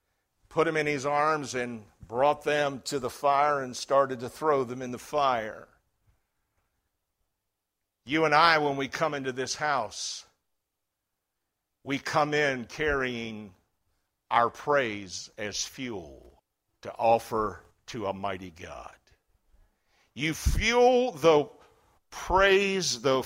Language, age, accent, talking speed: English, 60-79, American, 120 wpm